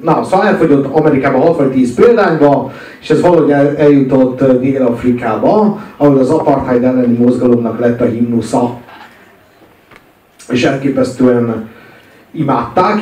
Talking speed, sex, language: 100 wpm, male, Hungarian